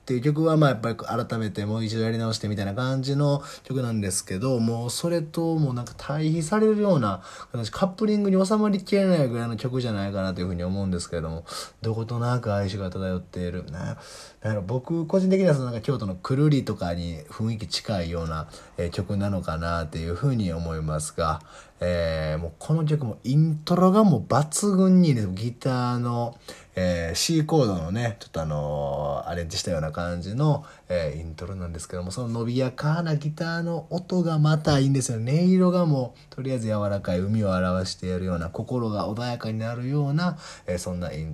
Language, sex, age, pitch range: Japanese, male, 20-39, 90-145 Hz